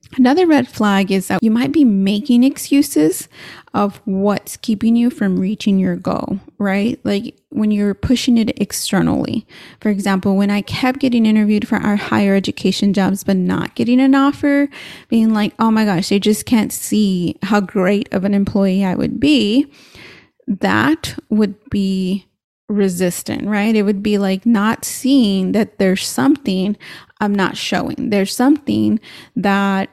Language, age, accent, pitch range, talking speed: English, 30-49, American, 195-245 Hz, 160 wpm